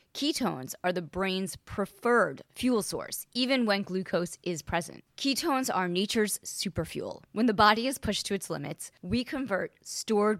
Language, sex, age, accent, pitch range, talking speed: English, female, 20-39, American, 175-225 Hz, 160 wpm